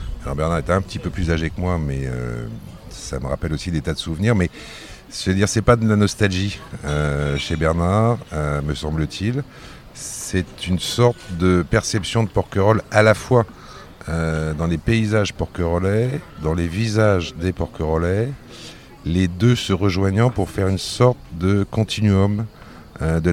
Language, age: French, 50-69